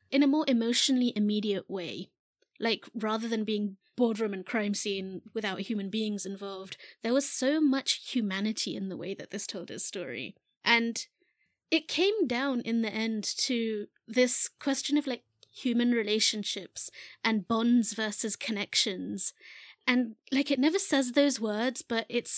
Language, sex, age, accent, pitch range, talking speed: English, female, 30-49, British, 210-260 Hz, 155 wpm